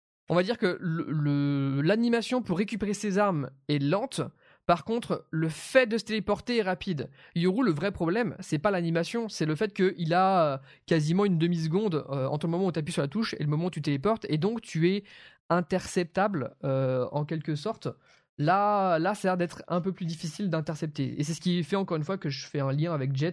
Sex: male